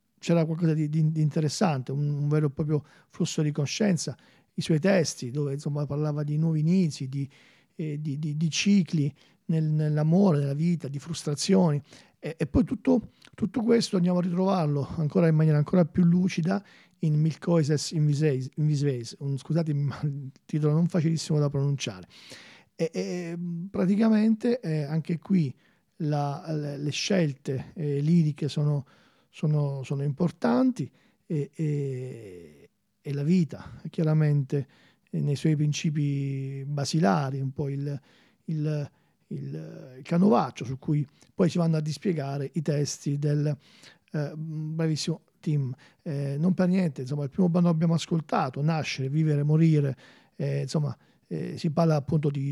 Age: 40-59